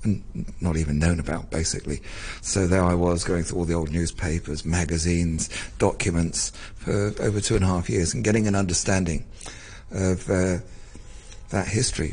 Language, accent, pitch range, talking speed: English, British, 85-110 Hz, 160 wpm